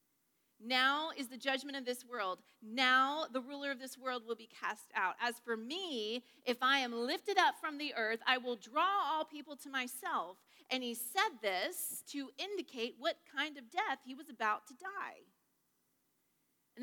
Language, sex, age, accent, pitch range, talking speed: English, female, 40-59, American, 195-295 Hz, 180 wpm